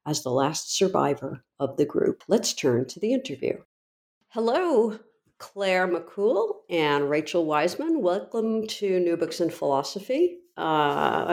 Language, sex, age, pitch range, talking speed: English, female, 50-69, 155-205 Hz, 135 wpm